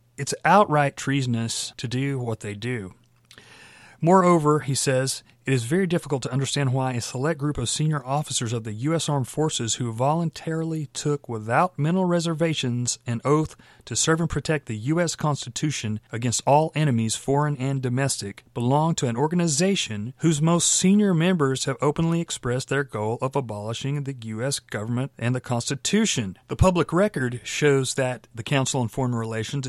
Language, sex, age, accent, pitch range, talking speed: English, male, 40-59, American, 120-150 Hz, 165 wpm